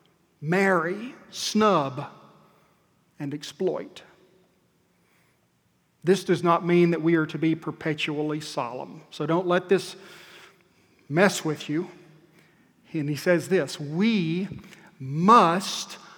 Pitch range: 160-195 Hz